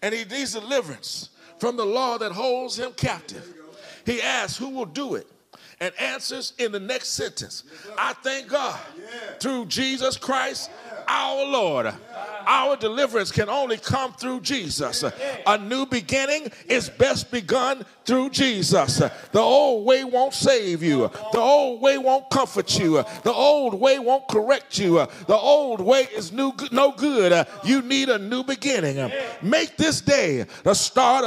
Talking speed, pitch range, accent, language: 155 wpm, 225-275 Hz, American, English